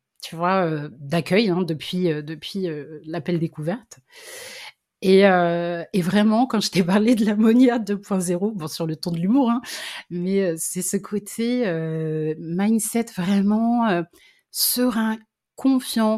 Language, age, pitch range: French, 30-49, 165-230 Hz